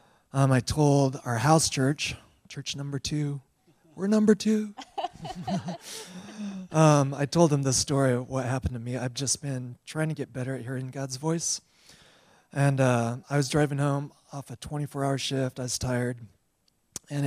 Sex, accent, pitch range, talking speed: male, American, 120-150 Hz, 165 wpm